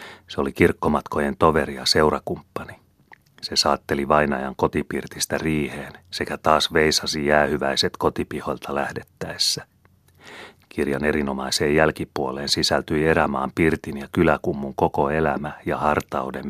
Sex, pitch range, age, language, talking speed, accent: male, 70-80 Hz, 30-49, Finnish, 105 wpm, native